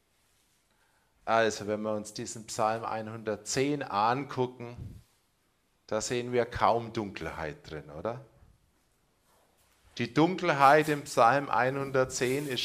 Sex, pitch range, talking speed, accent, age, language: male, 115-155 Hz, 100 wpm, German, 40-59, German